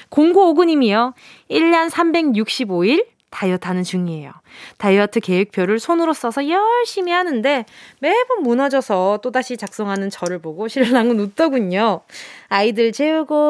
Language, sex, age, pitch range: Korean, female, 20-39, 205-320 Hz